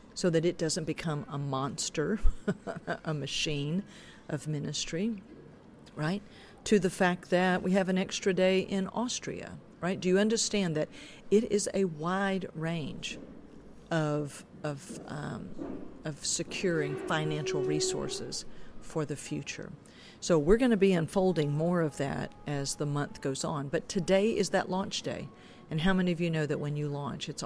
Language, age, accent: English, 50-69, American